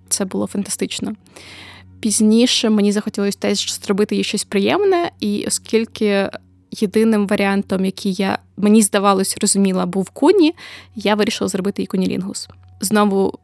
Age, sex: 20-39, female